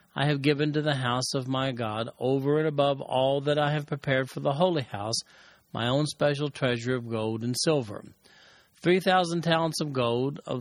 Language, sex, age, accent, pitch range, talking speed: English, male, 40-59, American, 125-150 Hz, 200 wpm